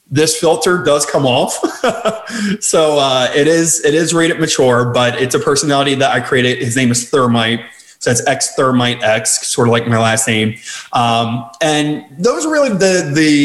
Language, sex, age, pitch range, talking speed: English, male, 30-49, 125-160 Hz, 185 wpm